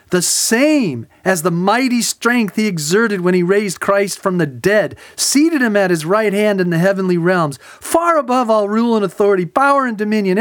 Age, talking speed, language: 40-59, 195 wpm, English